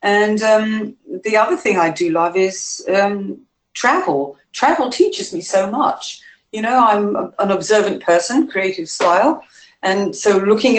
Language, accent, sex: English, British, female